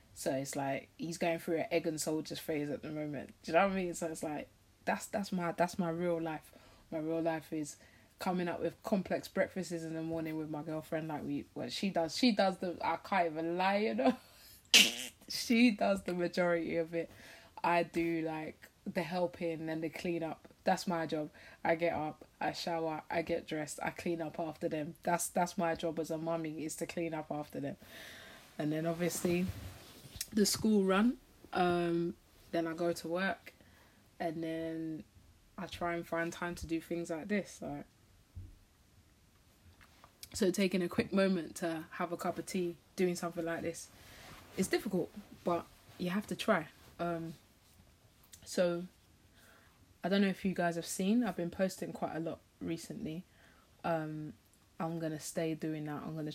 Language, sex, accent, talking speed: English, female, British, 185 wpm